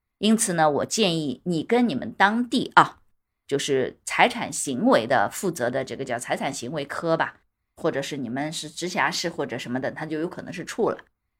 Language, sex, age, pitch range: Chinese, female, 20-39, 165-265 Hz